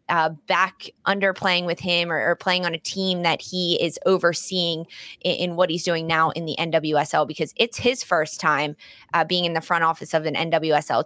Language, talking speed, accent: English, 210 wpm, American